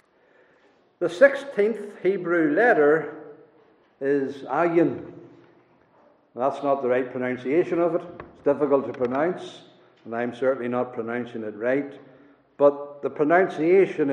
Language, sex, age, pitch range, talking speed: English, male, 60-79, 140-205 Hz, 115 wpm